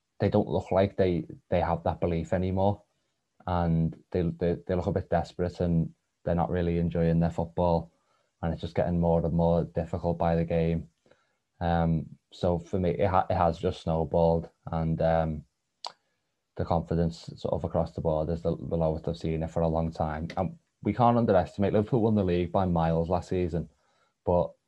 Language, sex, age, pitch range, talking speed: English, male, 20-39, 85-95 Hz, 190 wpm